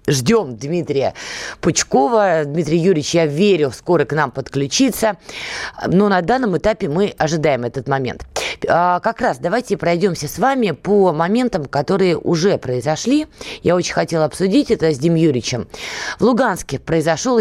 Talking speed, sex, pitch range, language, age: 140 wpm, female, 160-215 Hz, Russian, 20-39